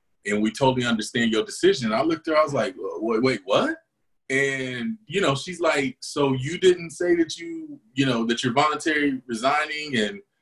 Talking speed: 195 wpm